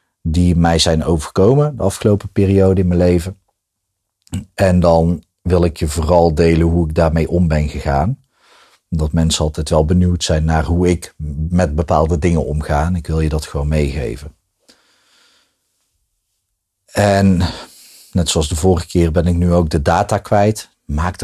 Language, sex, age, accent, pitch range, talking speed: Dutch, male, 40-59, Dutch, 85-100 Hz, 160 wpm